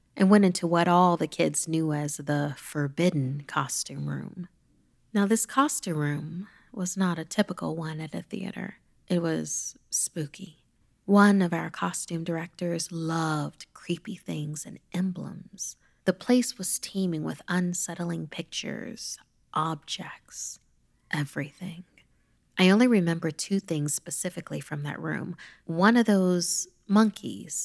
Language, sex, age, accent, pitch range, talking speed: English, female, 30-49, American, 160-200 Hz, 130 wpm